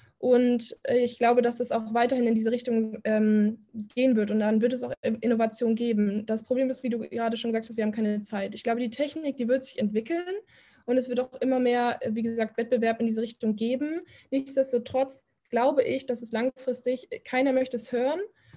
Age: 10-29